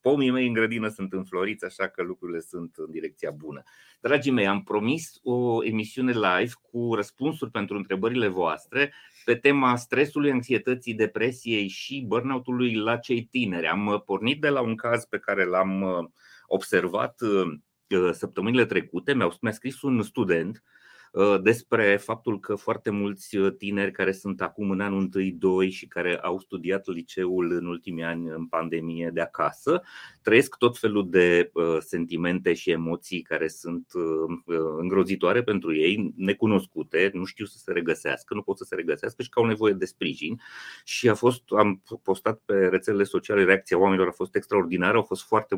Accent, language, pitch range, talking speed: native, Romanian, 90-120 Hz, 160 wpm